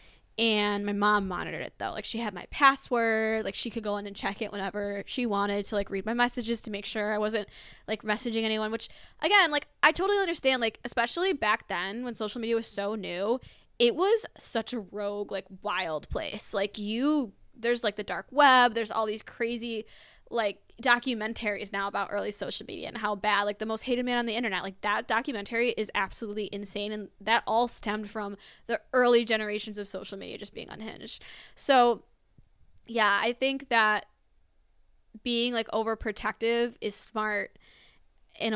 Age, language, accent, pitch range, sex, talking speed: 10-29, English, American, 205-240 Hz, female, 185 wpm